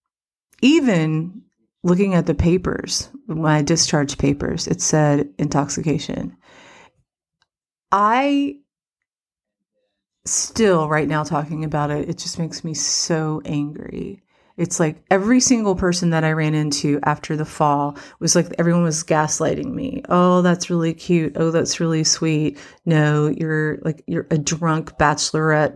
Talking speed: 135 wpm